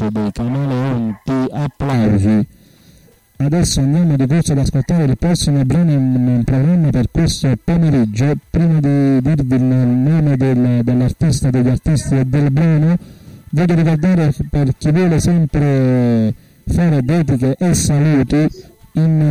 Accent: native